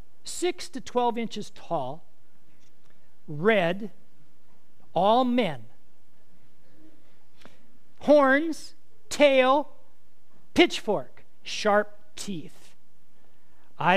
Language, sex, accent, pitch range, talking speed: English, male, American, 160-220 Hz, 60 wpm